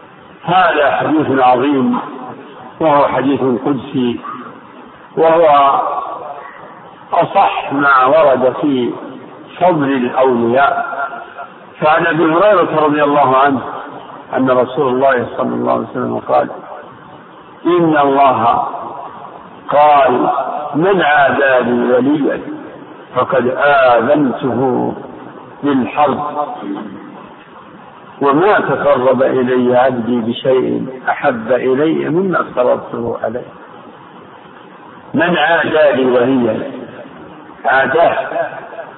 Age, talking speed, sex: 50-69, 75 wpm, male